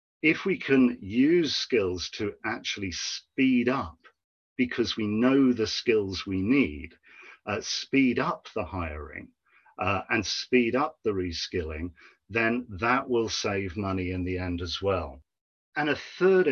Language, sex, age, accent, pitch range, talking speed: English, male, 40-59, British, 90-125 Hz, 145 wpm